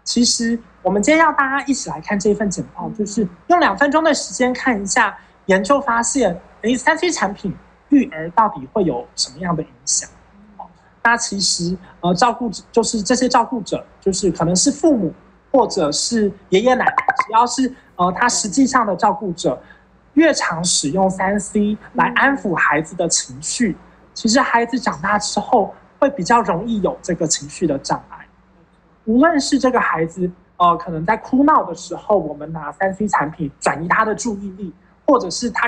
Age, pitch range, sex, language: 20-39, 180-250 Hz, male, Chinese